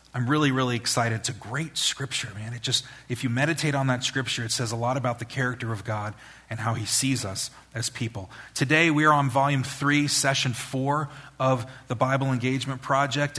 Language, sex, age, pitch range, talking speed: English, male, 30-49, 125-150 Hz, 205 wpm